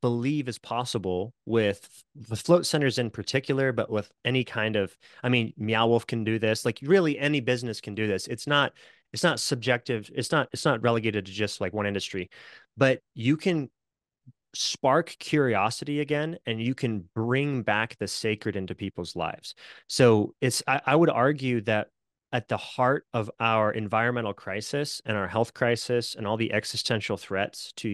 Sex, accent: male, American